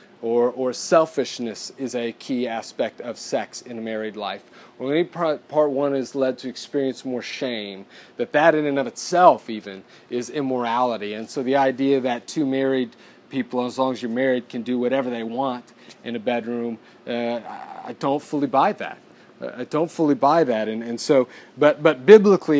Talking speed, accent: 185 wpm, American